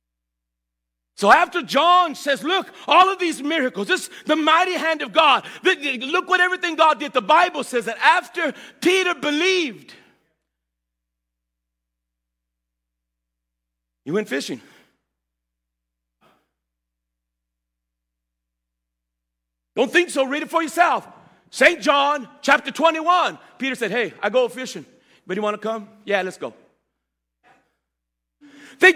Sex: male